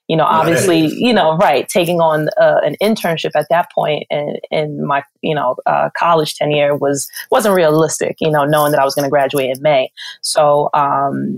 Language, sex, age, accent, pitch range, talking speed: English, female, 20-39, American, 145-170 Hz, 200 wpm